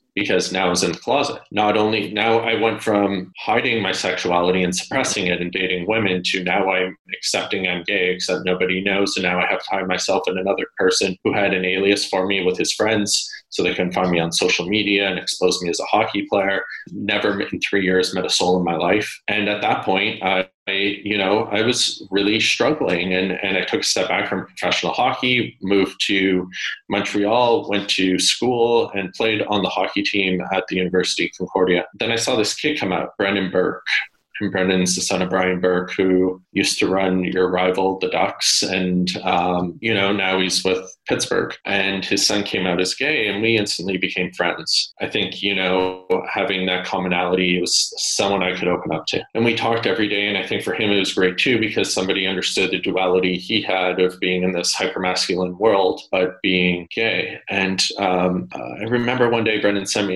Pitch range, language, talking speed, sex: 90-100 Hz, English, 210 wpm, male